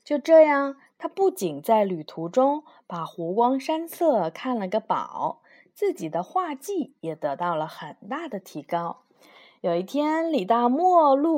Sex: female